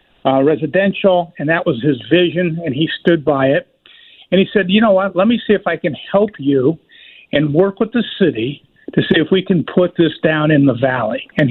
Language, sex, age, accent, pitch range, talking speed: English, male, 50-69, American, 150-185 Hz, 225 wpm